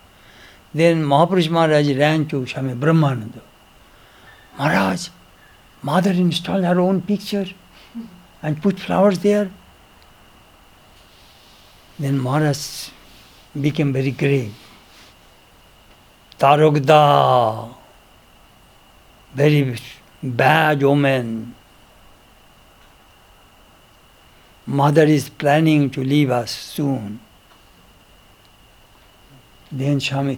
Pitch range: 130-170 Hz